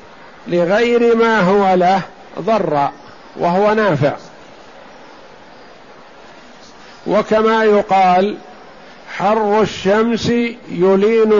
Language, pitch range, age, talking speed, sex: Arabic, 185-210 Hz, 50-69, 65 wpm, male